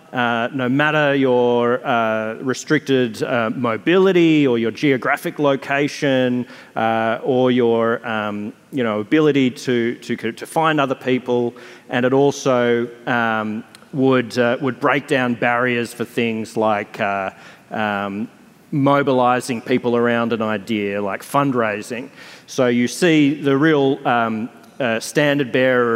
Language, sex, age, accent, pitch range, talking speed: English, male, 30-49, Australian, 115-135 Hz, 130 wpm